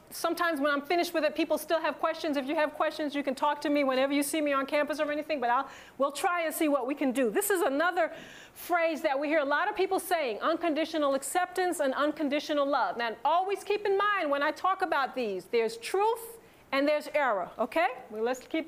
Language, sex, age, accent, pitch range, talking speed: English, female, 40-59, American, 275-355 Hz, 230 wpm